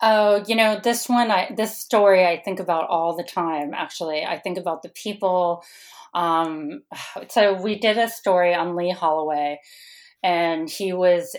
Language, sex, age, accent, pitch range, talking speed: English, female, 30-49, American, 170-205 Hz, 170 wpm